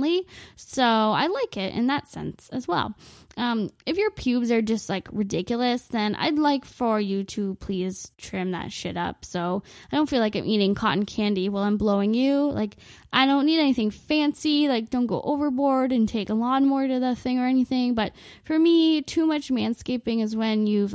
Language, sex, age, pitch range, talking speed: English, female, 10-29, 205-270 Hz, 200 wpm